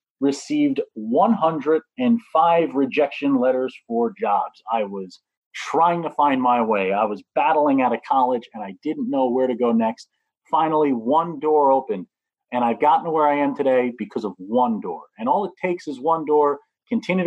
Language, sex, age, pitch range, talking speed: English, male, 40-59, 130-215 Hz, 175 wpm